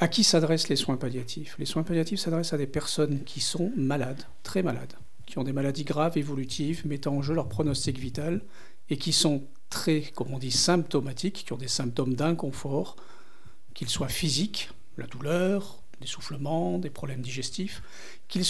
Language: French